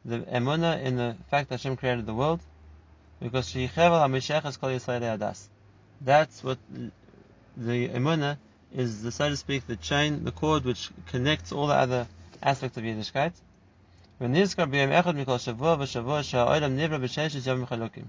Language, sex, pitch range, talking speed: English, male, 115-145 Hz, 120 wpm